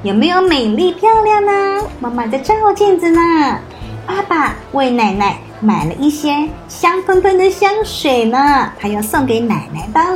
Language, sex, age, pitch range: Chinese, male, 20-39, 225-325 Hz